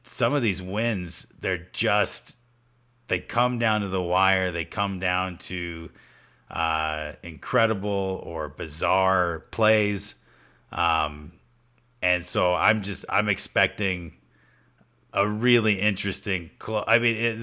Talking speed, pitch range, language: 115 wpm, 90-110 Hz, English